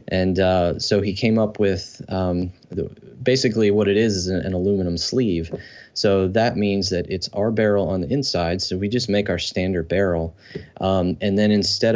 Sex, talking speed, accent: male, 190 wpm, American